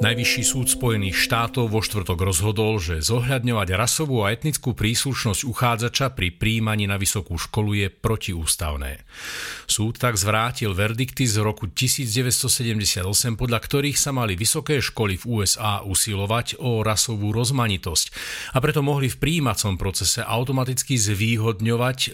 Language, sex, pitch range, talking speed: Slovak, male, 100-130 Hz, 130 wpm